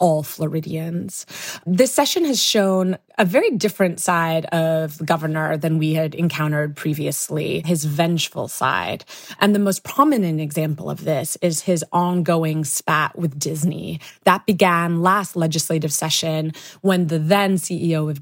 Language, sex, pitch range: English, female, 160-190 Hz